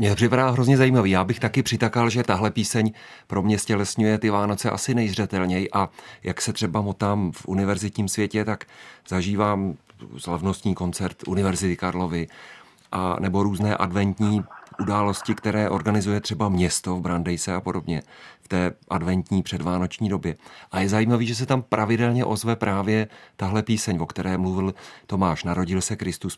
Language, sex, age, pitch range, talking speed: Czech, male, 40-59, 95-115 Hz, 150 wpm